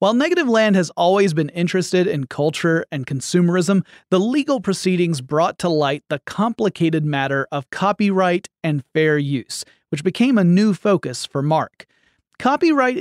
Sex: male